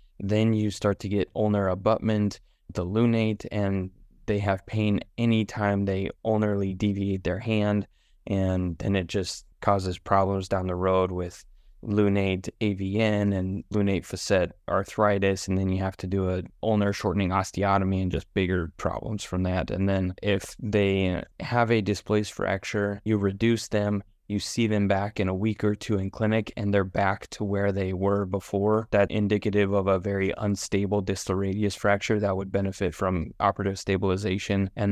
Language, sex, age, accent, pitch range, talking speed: English, male, 20-39, American, 95-105 Hz, 165 wpm